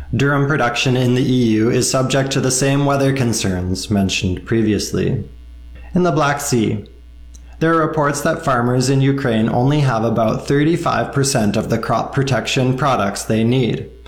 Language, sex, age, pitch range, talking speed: English, male, 20-39, 110-130 Hz, 155 wpm